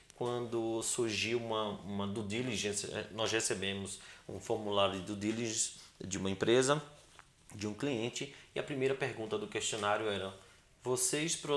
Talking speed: 140 wpm